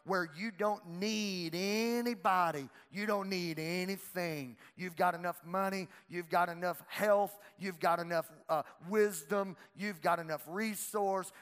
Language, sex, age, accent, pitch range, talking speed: English, male, 50-69, American, 140-195 Hz, 135 wpm